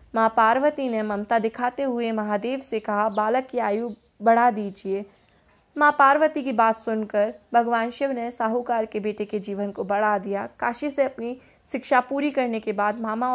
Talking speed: 175 wpm